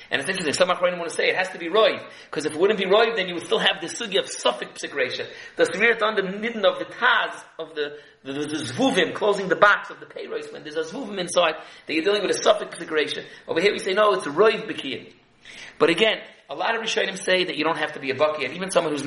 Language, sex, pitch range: English, male, 155-220 Hz